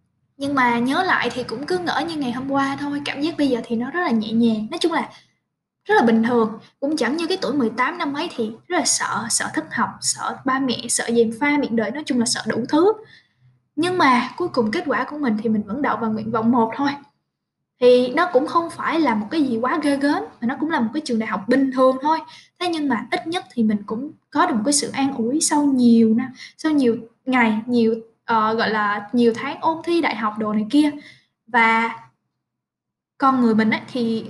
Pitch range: 230-300 Hz